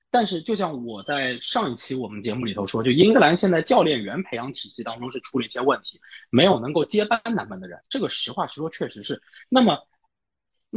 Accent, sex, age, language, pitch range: native, male, 20-39, Chinese, 125-200 Hz